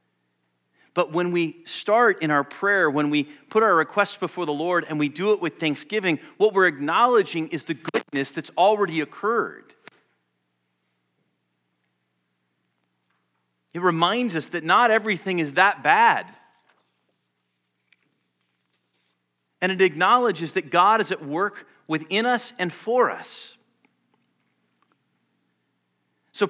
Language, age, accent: English, 40-59, American